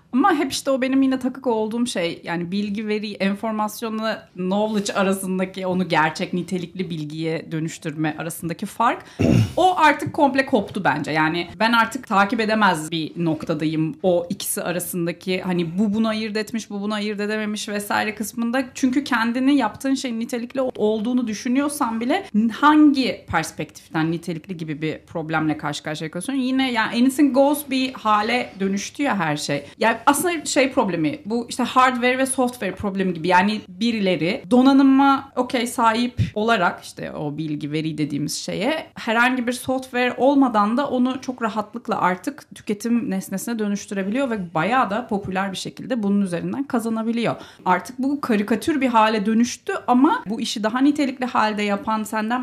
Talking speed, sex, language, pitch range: 150 wpm, female, Turkish, 180-255 Hz